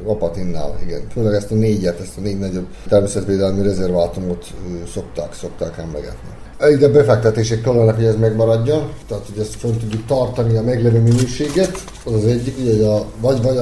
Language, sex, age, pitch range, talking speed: Hungarian, male, 30-49, 105-125 Hz, 185 wpm